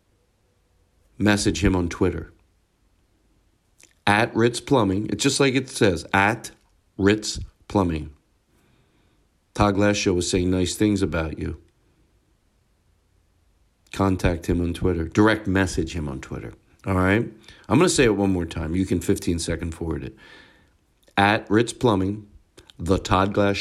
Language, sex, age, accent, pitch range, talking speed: English, male, 50-69, American, 90-110 Hz, 140 wpm